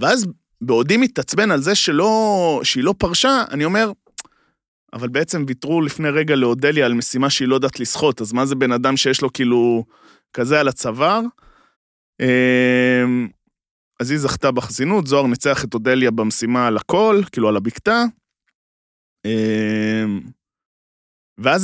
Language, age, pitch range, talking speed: Hebrew, 20-39, 120-180 Hz, 140 wpm